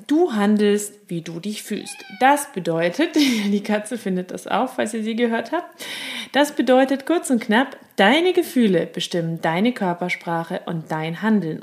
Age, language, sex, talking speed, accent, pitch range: 30-49, German, female, 160 wpm, German, 190-265 Hz